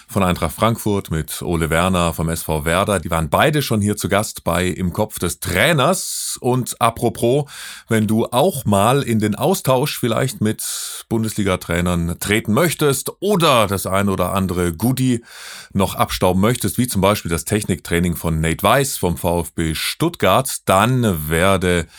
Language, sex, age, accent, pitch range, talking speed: German, male, 30-49, German, 80-110 Hz, 155 wpm